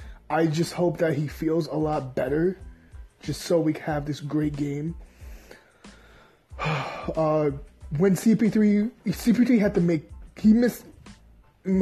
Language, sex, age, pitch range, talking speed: English, male, 20-39, 160-185 Hz, 130 wpm